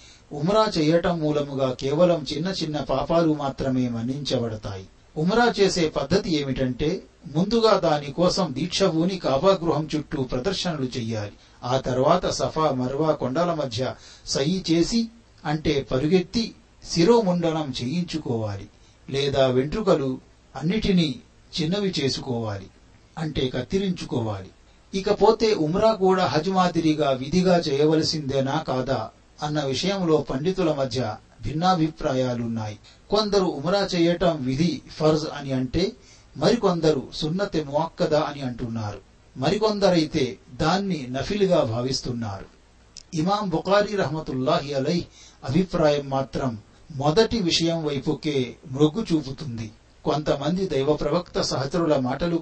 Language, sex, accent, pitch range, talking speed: Telugu, male, native, 130-175 Hz, 95 wpm